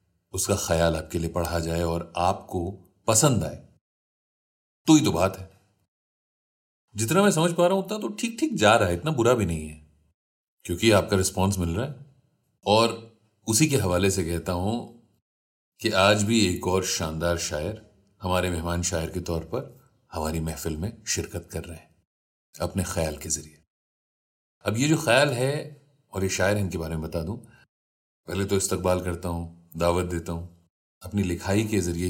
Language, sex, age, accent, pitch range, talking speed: Hindi, male, 40-59, native, 80-105 Hz, 180 wpm